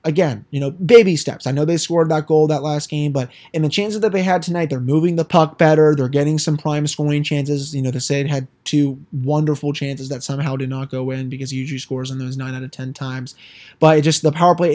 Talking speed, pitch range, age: 260 wpm, 140-170 Hz, 20-39